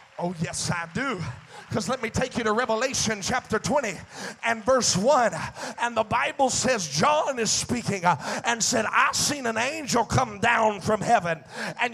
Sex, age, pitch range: male, 40-59, 195-260 Hz